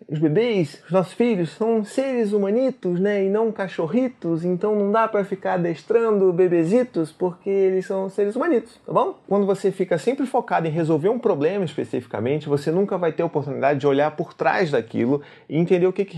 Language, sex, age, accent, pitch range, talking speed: Portuguese, male, 30-49, Brazilian, 140-190 Hz, 195 wpm